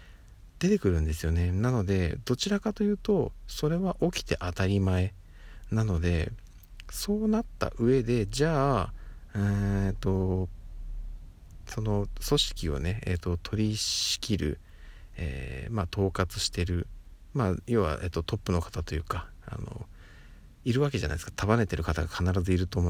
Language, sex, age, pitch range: Japanese, male, 50-69, 85-115 Hz